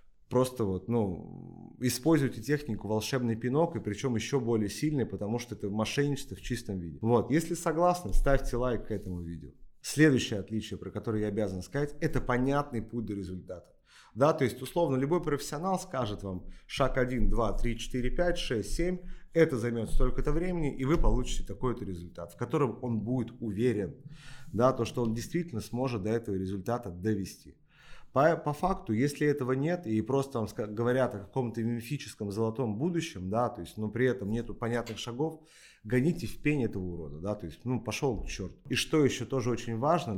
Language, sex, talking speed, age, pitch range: Russian, male, 175 wpm, 30-49, 105-135 Hz